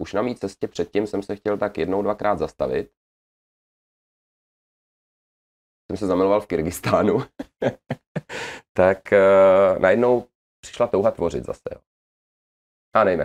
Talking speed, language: 120 wpm, Czech